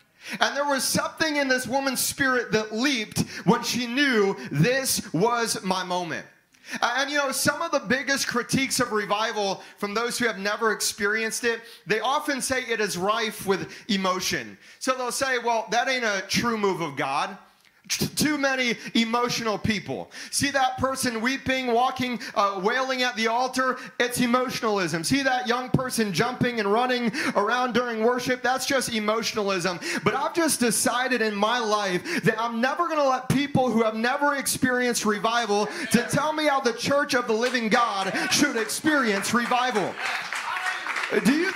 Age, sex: 30-49, male